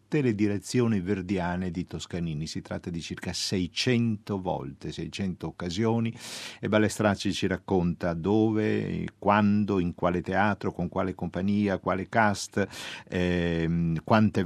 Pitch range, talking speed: 85-105 Hz, 120 wpm